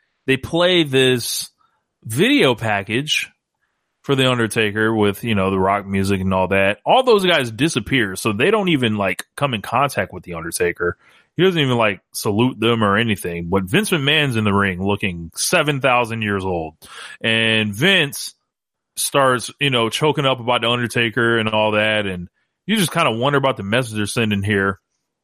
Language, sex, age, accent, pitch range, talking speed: English, male, 30-49, American, 115-165 Hz, 180 wpm